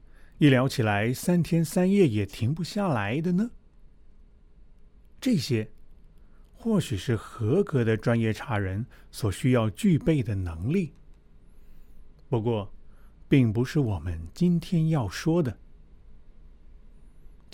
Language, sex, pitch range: Chinese, male, 100-145 Hz